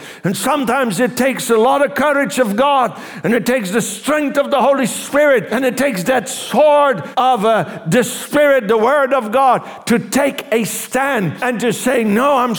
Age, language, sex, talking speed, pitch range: 60-79, English, male, 195 wpm, 200-270 Hz